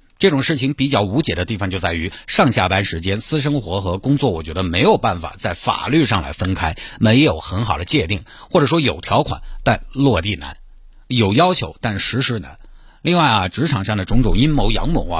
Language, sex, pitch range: Chinese, male, 95-140 Hz